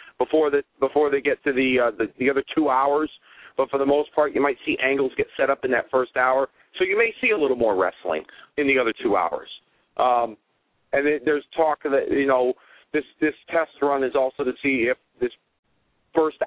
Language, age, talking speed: English, 40-59, 210 wpm